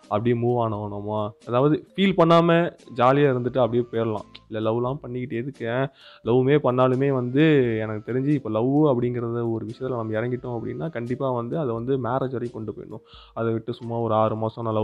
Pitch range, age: 110-135 Hz, 20-39